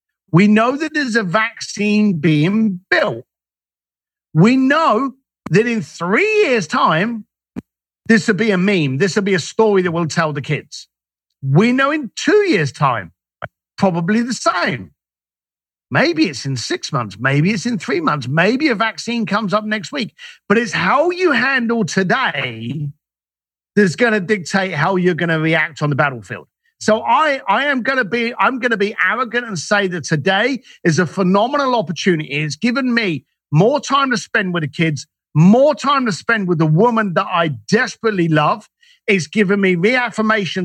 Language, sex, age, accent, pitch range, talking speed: English, male, 50-69, British, 160-230 Hz, 170 wpm